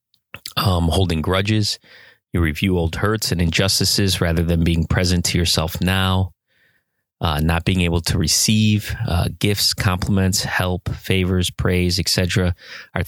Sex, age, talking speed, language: male, 30-49, 140 wpm, English